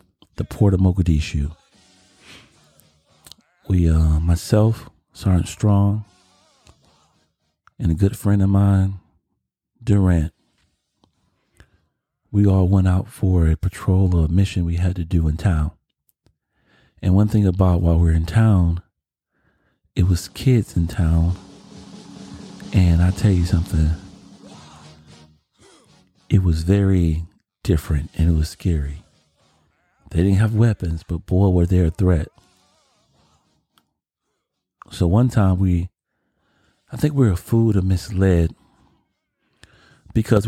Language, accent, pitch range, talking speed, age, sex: English, American, 85-100 Hz, 120 wpm, 40-59, male